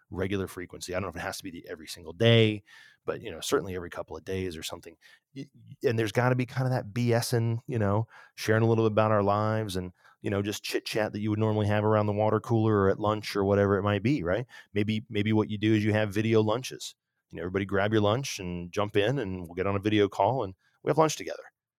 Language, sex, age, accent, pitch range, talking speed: English, male, 30-49, American, 95-110 Hz, 270 wpm